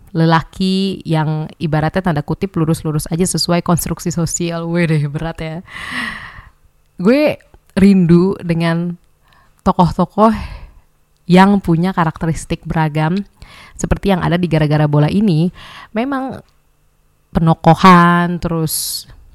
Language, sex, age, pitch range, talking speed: Indonesian, female, 20-39, 160-190 Hz, 95 wpm